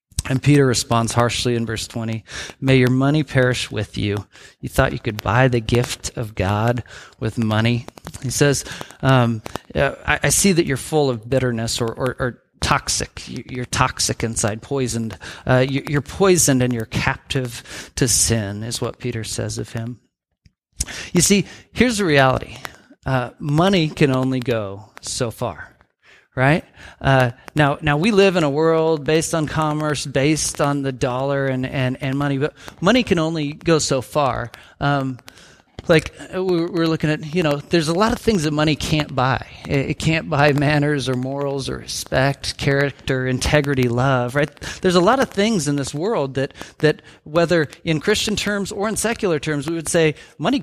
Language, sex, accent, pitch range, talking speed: English, male, American, 120-155 Hz, 170 wpm